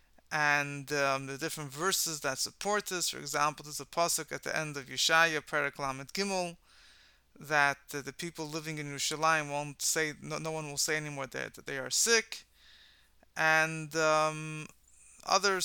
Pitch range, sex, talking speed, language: 145-175 Hz, male, 165 wpm, English